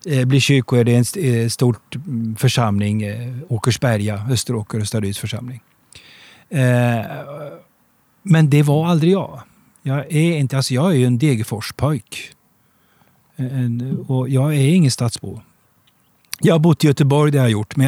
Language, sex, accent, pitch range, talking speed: Swedish, male, native, 115-145 Hz, 120 wpm